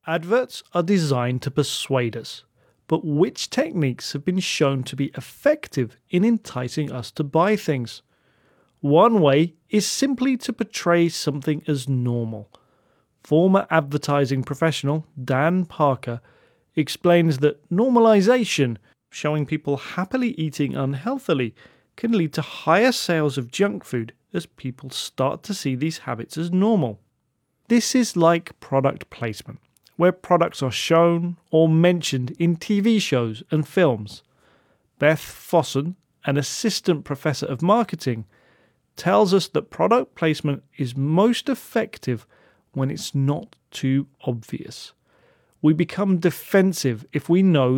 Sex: male